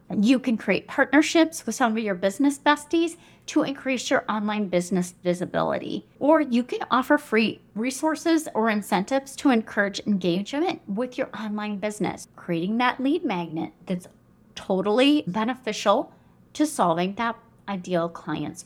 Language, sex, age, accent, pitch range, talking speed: English, female, 30-49, American, 190-275 Hz, 140 wpm